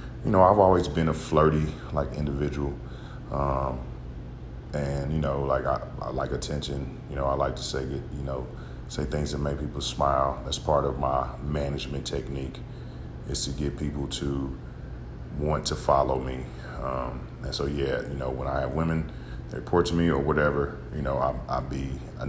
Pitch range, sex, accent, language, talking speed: 65-75 Hz, male, American, English, 185 wpm